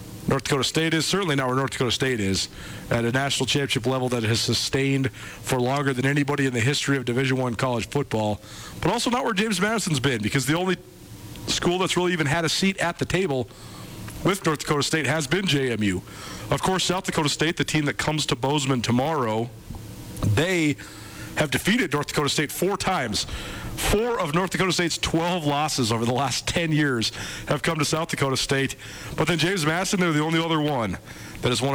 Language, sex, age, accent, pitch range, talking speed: English, male, 40-59, American, 120-155 Hz, 205 wpm